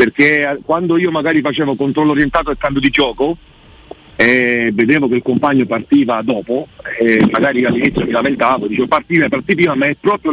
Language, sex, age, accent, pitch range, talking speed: Italian, male, 50-69, native, 125-170 Hz, 180 wpm